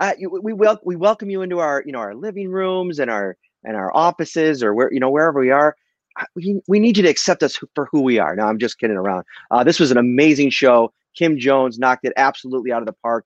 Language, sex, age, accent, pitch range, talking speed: English, male, 30-49, American, 120-160 Hz, 260 wpm